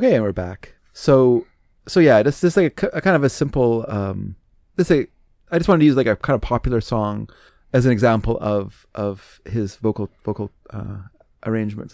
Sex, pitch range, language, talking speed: male, 105-130 Hz, English, 210 wpm